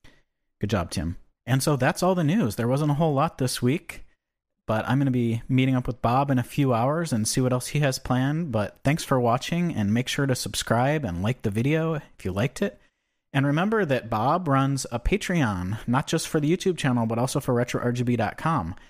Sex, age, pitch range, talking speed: male, 30-49, 105-140 Hz, 220 wpm